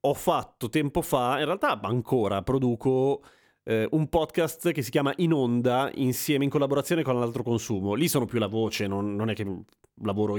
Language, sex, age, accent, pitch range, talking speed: Italian, male, 30-49, native, 115-145 Hz, 185 wpm